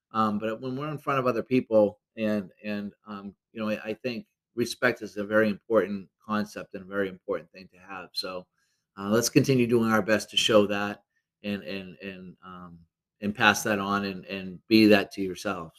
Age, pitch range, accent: 30-49, 105-135 Hz, American